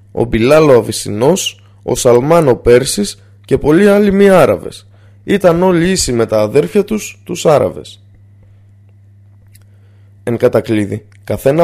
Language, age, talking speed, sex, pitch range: Greek, 20-39, 130 wpm, male, 100-140 Hz